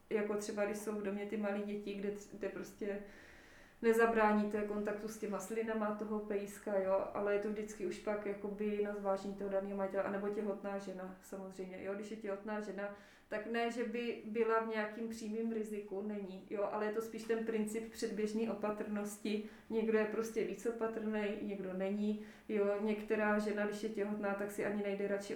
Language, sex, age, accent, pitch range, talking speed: Czech, female, 20-39, native, 195-220 Hz, 185 wpm